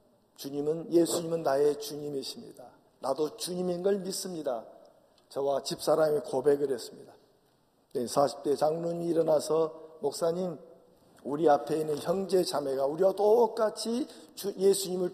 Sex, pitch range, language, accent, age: male, 150-200 Hz, Korean, native, 50-69